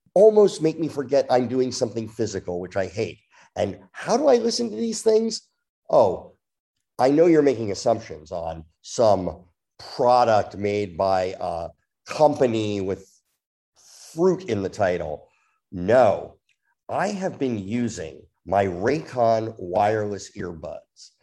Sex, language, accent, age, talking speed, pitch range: male, English, American, 50-69, 130 wpm, 105-160 Hz